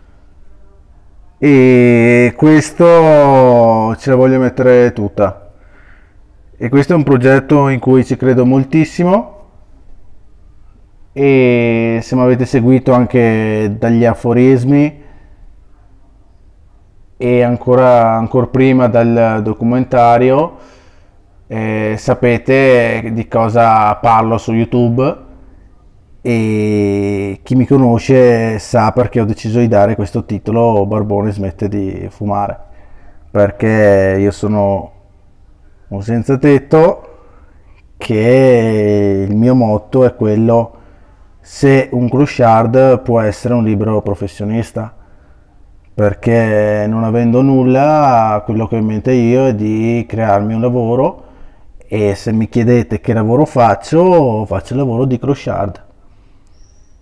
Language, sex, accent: Italian, male, native